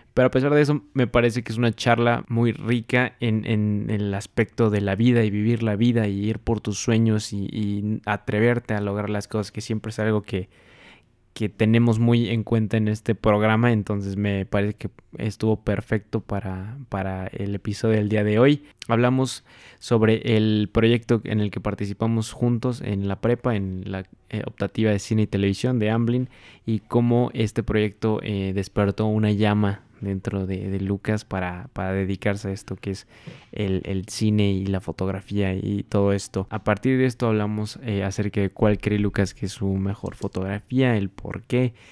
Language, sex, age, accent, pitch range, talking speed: Spanish, male, 20-39, Mexican, 100-115 Hz, 190 wpm